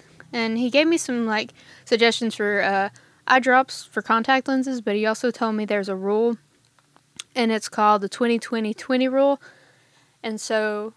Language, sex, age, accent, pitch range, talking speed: English, female, 10-29, American, 210-250 Hz, 165 wpm